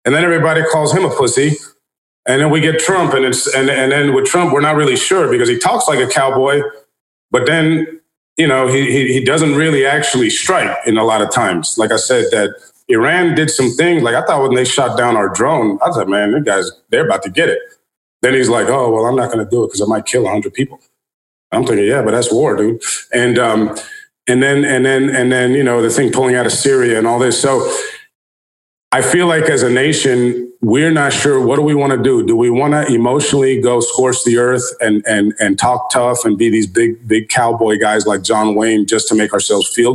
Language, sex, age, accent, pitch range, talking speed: English, male, 30-49, American, 115-155 Hz, 240 wpm